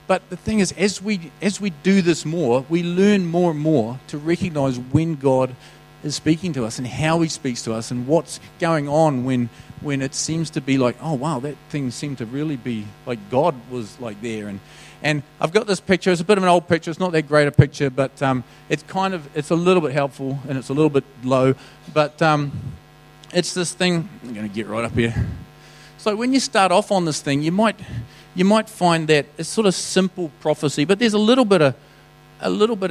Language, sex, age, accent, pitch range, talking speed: English, male, 40-59, Australian, 140-180 Hz, 235 wpm